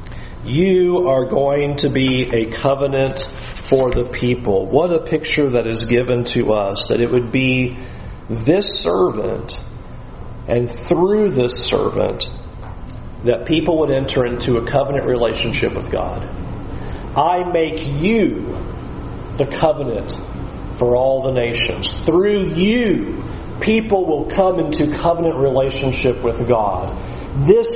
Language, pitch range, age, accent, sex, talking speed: English, 135-195 Hz, 40-59, American, male, 125 wpm